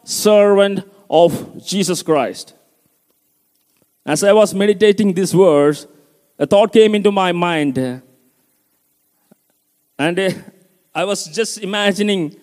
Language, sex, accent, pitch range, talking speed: Malayalam, male, native, 185-230 Hz, 100 wpm